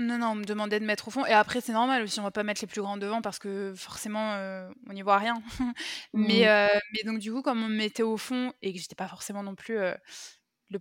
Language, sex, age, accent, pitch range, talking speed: French, female, 20-39, French, 200-230 Hz, 285 wpm